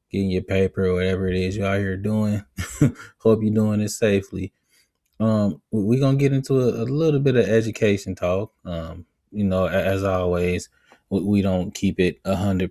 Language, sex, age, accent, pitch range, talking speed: English, male, 20-39, American, 95-120 Hz, 180 wpm